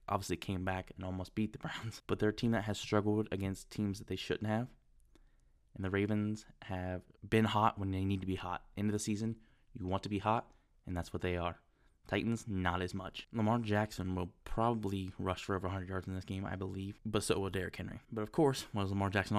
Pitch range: 95-110 Hz